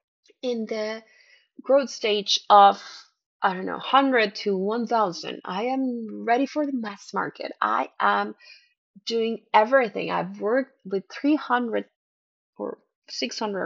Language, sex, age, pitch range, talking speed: English, female, 20-39, 195-265 Hz, 125 wpm